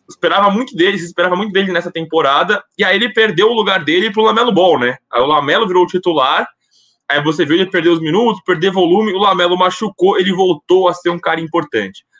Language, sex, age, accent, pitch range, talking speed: Portuguese, male, 20-39, Brazilian, 150-195 Hz, 215 wpm